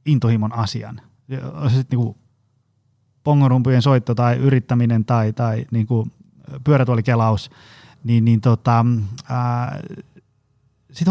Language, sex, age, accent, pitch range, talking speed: Finnish, male, 30-49, native, 120-150 Hz, 105 wpm